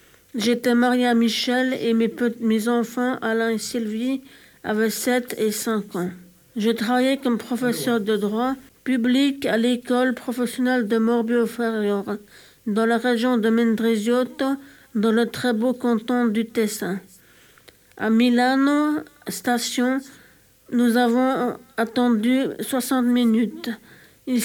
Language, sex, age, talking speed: Italian, female, 50-69, 125 wpm